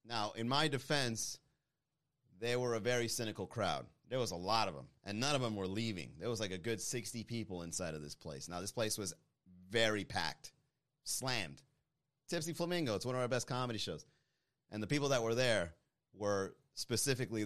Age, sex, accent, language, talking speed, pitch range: 30-49, male, American, English, 195 wpm, 100-130 Hz